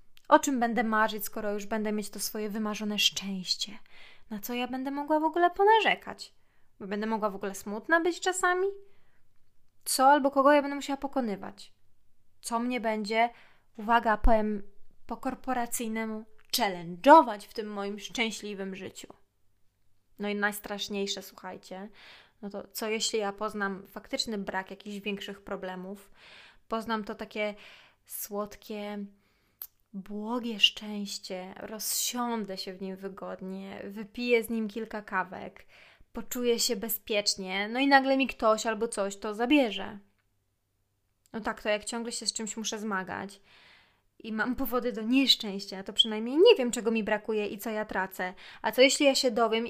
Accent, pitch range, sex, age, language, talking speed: native, 195-240 Hz, female, 20-39, Polish, 150 wpm